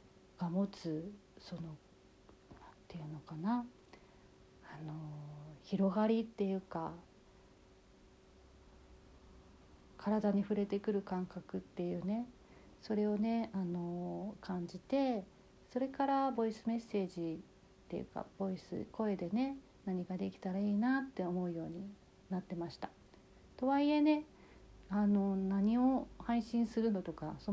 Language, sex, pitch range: Japanese, female, 175-230 Hz